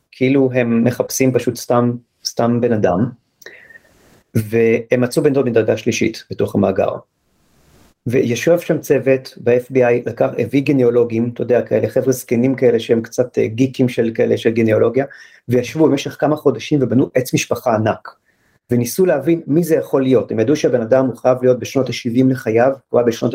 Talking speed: 160 wpm